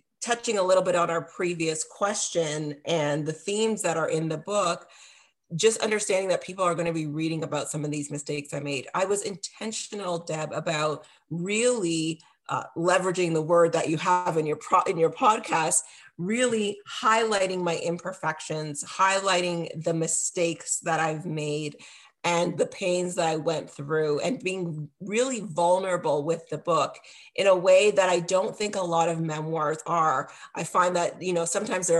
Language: English